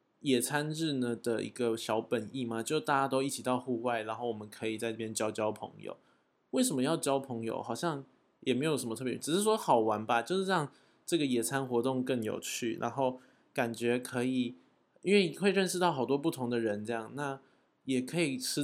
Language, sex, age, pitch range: Chinese, male, 20-39, 115-145 Hz